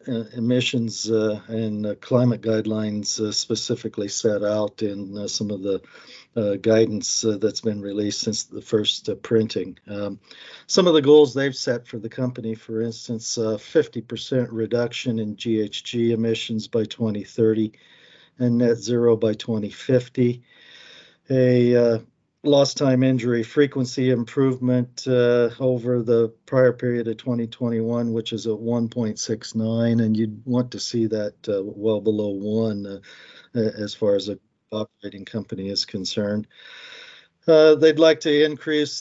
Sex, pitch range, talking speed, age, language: male, 110-125 Hz, 145 wpm, 50-69, English